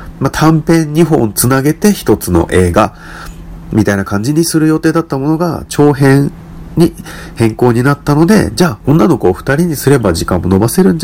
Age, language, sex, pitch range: 40-59, Japanese, male, 100-165 Hz